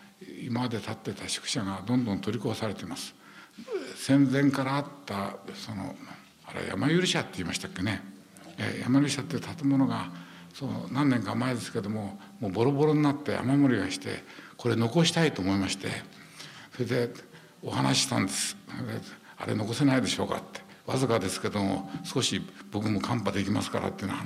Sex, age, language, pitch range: male, 60-79, Japanese, 100-135 Hz